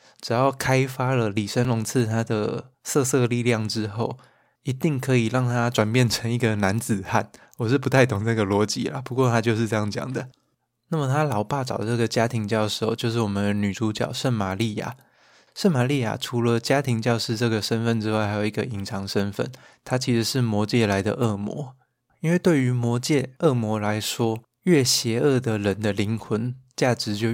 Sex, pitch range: male, 110-130 Hz